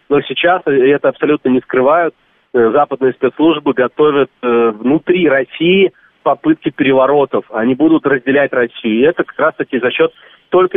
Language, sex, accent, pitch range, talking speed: Russian, male, native, 130-165 Hz, 140 wpm